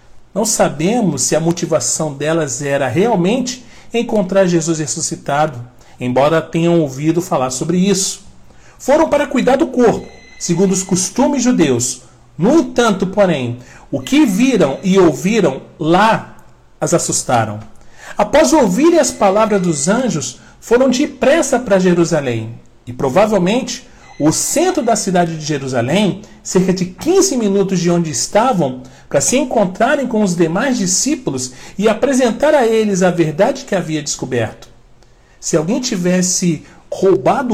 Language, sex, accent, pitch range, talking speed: Portuguese, male, Brazilian, 145-235 Hz, 130 wpm